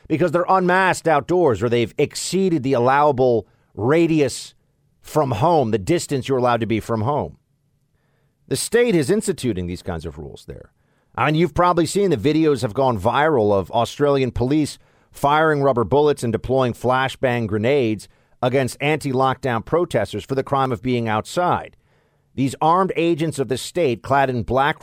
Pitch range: 120-160 Hz